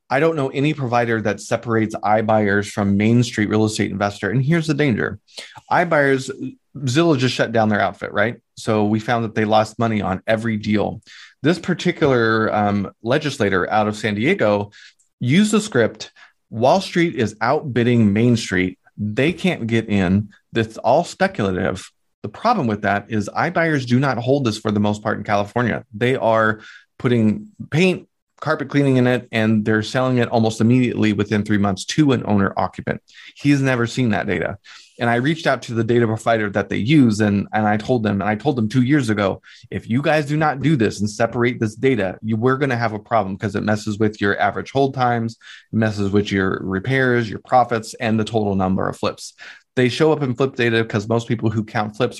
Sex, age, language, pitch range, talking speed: male, 30-49, English, 105-130 Hz, 200 wpm